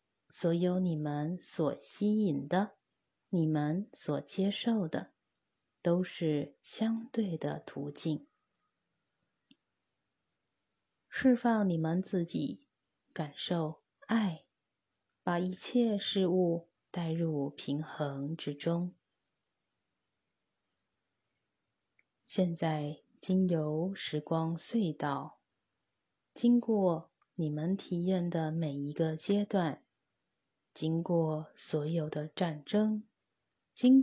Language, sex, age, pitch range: Chinese, female, 30-49, 150-195 Hz